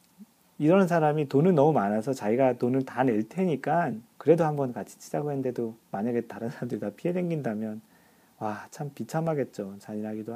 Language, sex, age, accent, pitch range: Korean, male, 40-59, native, 110-155 Hz